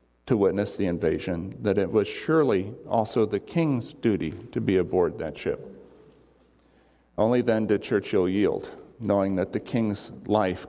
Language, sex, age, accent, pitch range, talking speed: English, male, 50-69, American, 90-120 Hz, 150 wpm